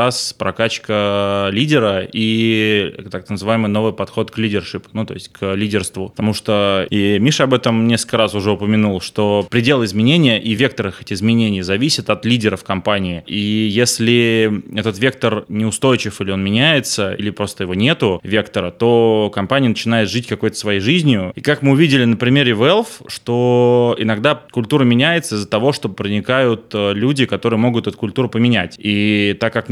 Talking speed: 160 wpm